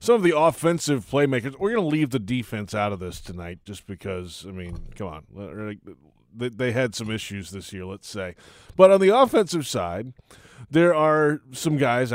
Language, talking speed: English, 190 wpm